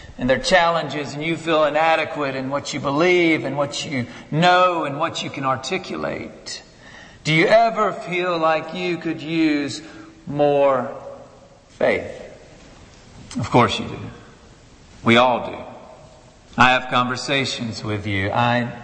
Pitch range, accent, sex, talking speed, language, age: 125-165 Hz, American, male, 135 wpm, English, 40-59